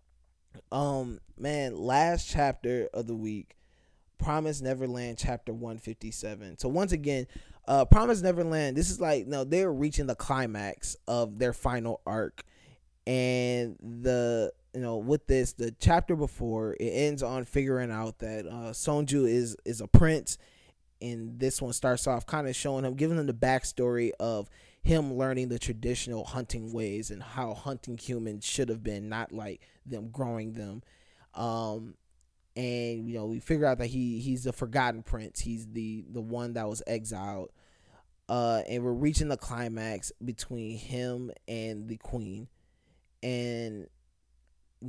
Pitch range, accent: 110-130 Hz, American